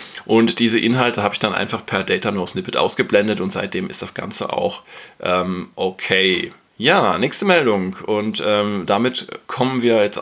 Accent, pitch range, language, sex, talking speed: German, 100-120 Hz, German, male, 170 wpm